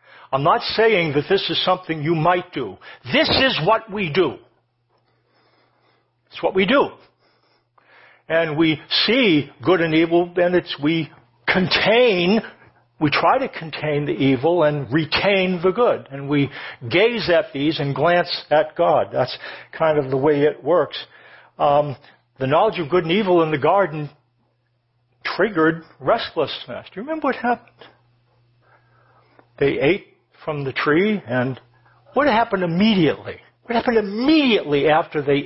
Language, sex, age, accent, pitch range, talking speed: English, male, 60-79, American, 140-185 Hz, 145 wpm